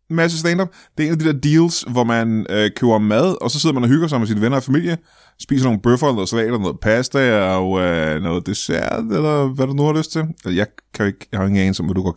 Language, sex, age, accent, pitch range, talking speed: Danish, male, 20-39, native, 110-150 Hz, 270 wpm